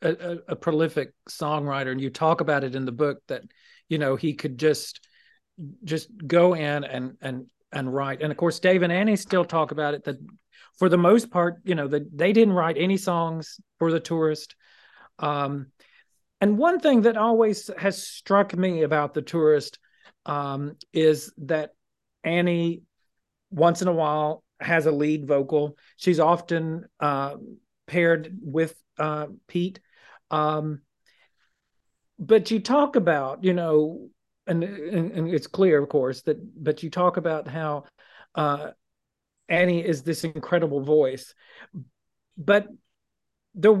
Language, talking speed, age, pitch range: English, 150 wpm, 40-59, 150-185 Hz